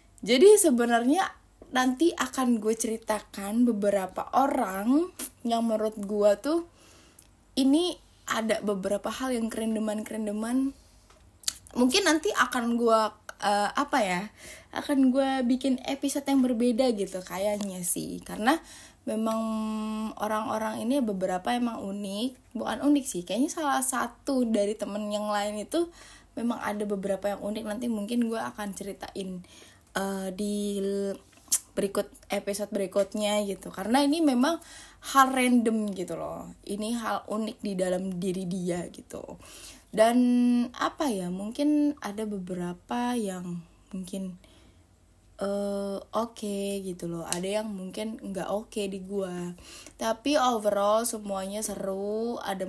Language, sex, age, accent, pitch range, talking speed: Indonesian, female, 10-29, native, 195-245 Hz, 125 wpm